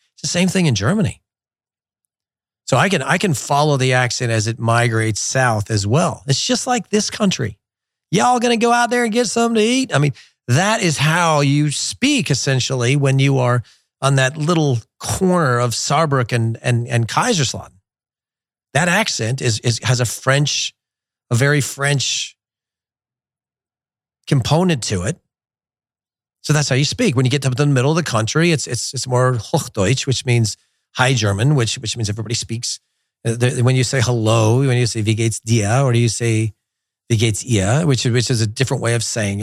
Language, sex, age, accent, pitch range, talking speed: English, male, 40-59, American, 115-145 Hz, 185 wpm